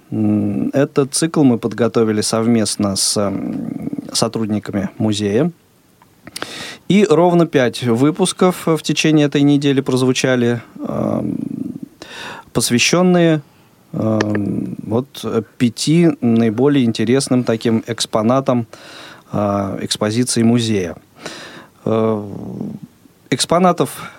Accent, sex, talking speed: native, male, 60 wpm